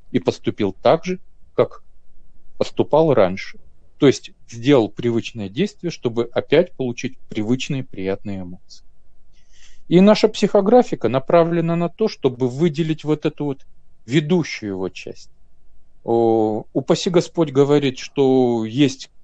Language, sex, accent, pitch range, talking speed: Russian, male, native, 110-155 Hz, 120 wpm